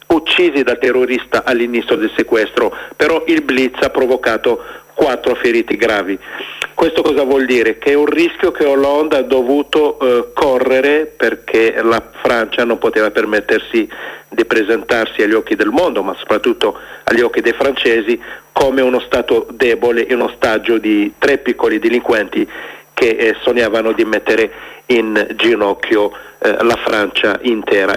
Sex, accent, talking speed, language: male, native, 145 wpm, Italian